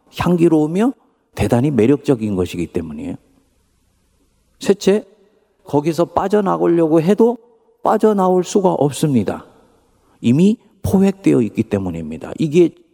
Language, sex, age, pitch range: Korean, male, 50-69, 125-205 Hz